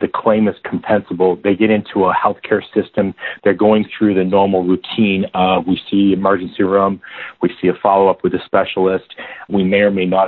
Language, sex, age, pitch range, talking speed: English, male, 40-59, 90-110 Hz, 195 wpm